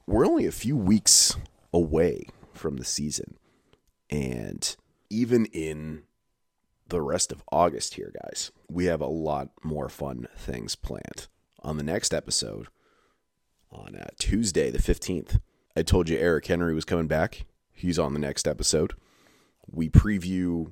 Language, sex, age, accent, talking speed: English, male, 30-49, American, 140 wpm